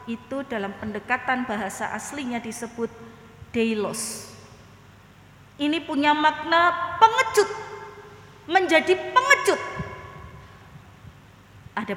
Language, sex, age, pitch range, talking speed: Indonesian, female, 30-49, 185-300 Hz, 75 wpm